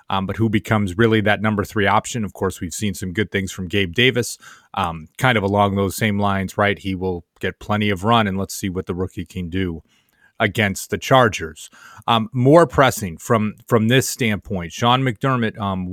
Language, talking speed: English, 205 wpm